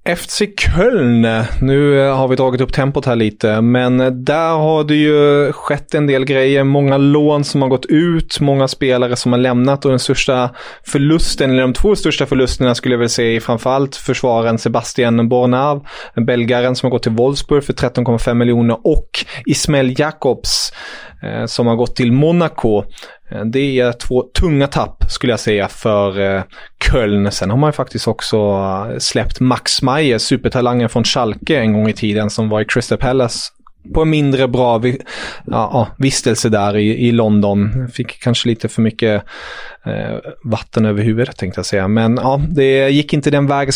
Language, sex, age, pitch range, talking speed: English, male, 20-39, 115-140 Hz, 175 wpm